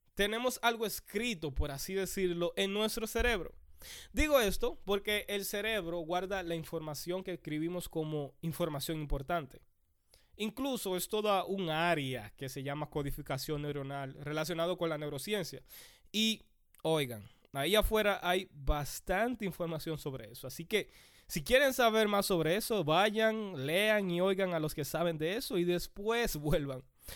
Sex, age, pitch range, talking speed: male, 20-39, 150-215 Hz, 145 wpm